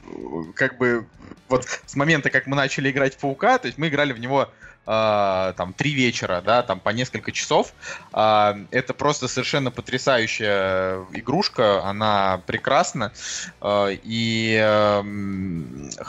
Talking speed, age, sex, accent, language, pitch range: 140 wpm, 20-39, male, native, Russian, 110-135 Hz